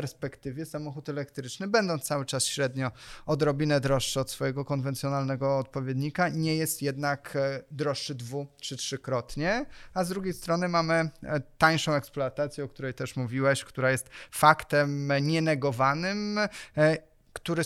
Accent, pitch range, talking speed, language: native, 135-165 Hz, 120 wpm, Polish